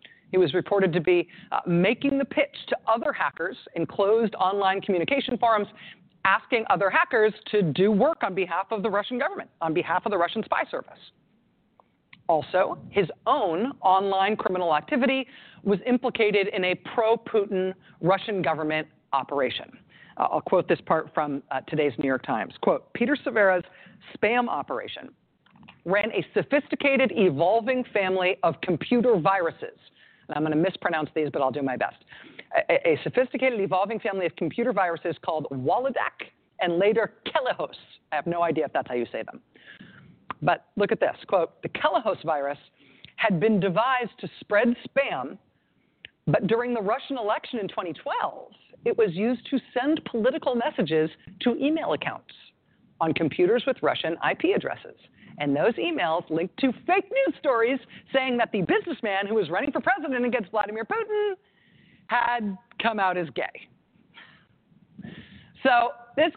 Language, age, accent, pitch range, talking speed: English, 40-59, American, 185-260 Hz, 155 wpm